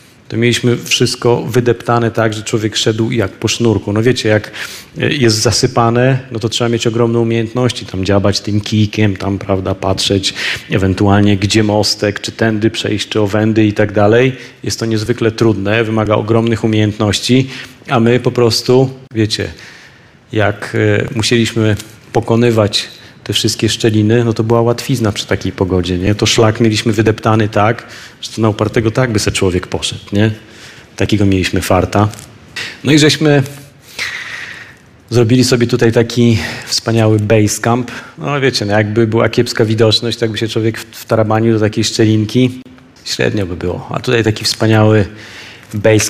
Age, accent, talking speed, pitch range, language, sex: 30-49, native, 150 wpm, 105-120 Hz, Polish, male